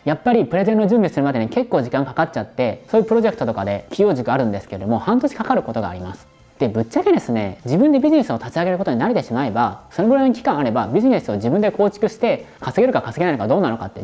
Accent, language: native, Japanese